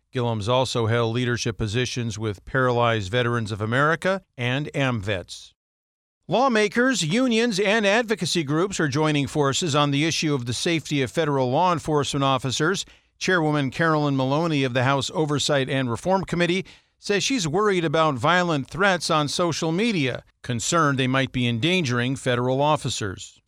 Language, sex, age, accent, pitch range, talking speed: English, male, 50-69, American, 125-170 Hz, 145 wpm